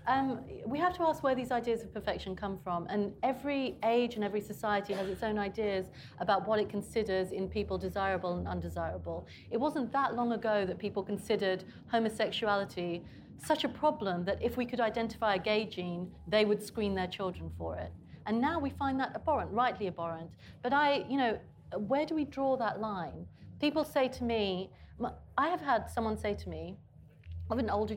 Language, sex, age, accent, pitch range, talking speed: English, female, 30-49, British, 190-255 Hz, 195 wpm